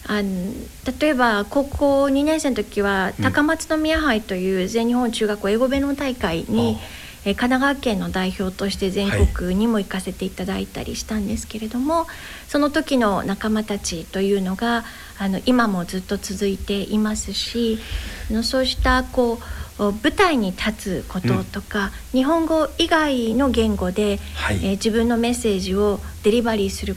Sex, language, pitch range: female, Japanese, 195-245 Hz